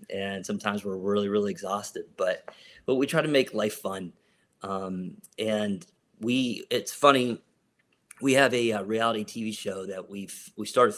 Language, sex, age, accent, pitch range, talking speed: English, male, 30-49, American, 95-115 Hz, 165 wpm